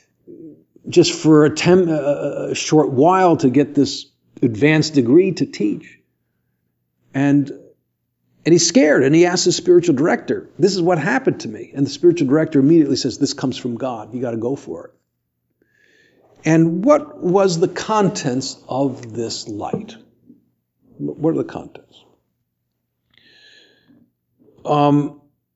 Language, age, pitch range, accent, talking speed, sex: English, 50-69, 120-160 Hz, American, 140 wpm, male